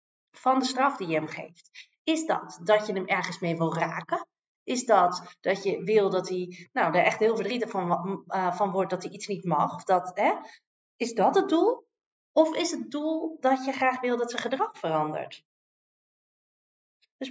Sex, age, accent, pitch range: female, 40-59, Dutch, 190-290 Hz